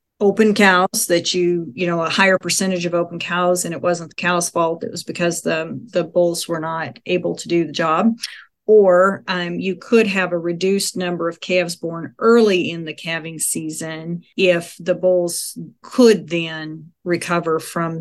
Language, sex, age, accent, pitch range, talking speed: English, female, 40-59, American, 160-185 Hz, 180 wpm